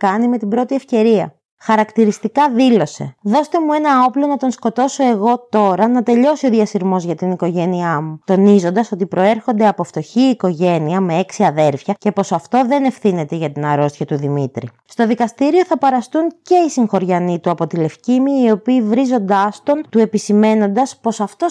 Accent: native